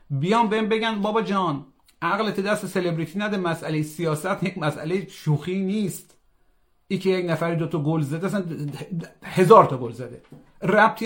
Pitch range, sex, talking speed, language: 145-185 Hz, male, 155 wpm, Persian